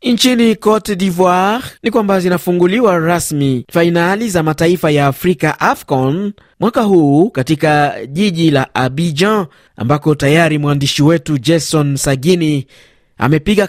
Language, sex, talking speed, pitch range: Swahili, male, 115 wpm, 140-175 Hz